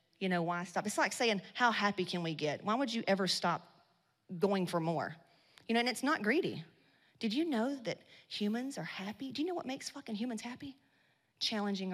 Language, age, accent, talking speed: English, 30-49, American, 210 wpm